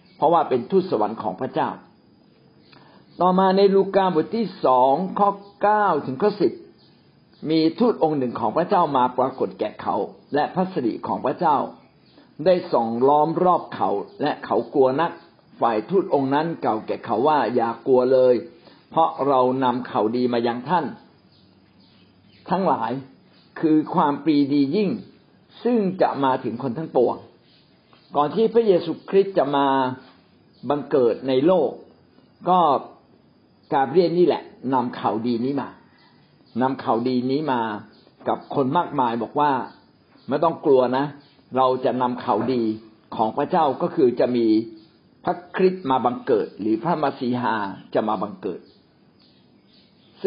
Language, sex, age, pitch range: Thai, male, 60-79, 125-180 Hz